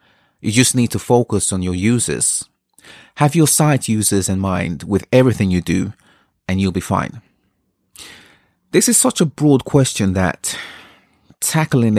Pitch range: 95-130 Hz